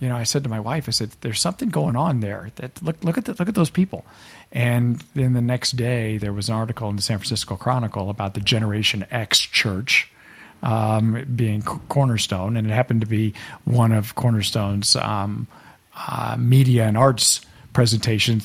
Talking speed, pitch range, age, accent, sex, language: 190 wpm, 105-130 Hz, 50-69, American, male, English